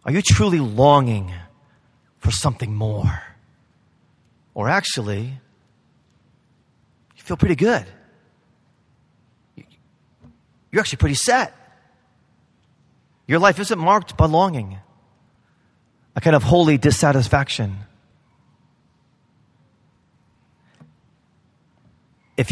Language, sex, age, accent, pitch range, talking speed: English, male, 40-59, American, 115-150 Hz, 75 wpm